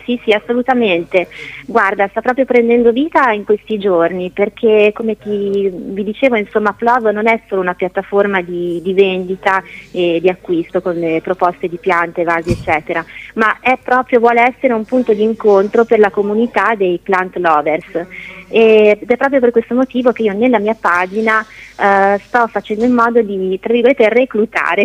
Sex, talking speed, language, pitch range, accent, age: female, 165 wpm, Italian, 190-230 Hz, native, 30-49